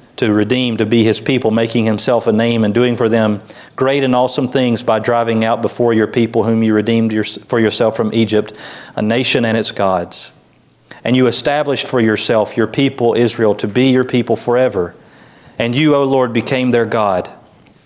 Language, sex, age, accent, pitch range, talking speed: English, male, 40-59, American, 105-125 Hz, 190 wpm